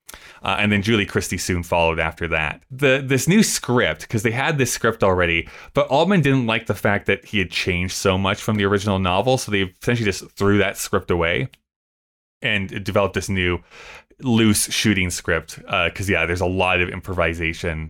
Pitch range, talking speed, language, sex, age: 90-120 Hz, 195 wpm, English, male, 20-39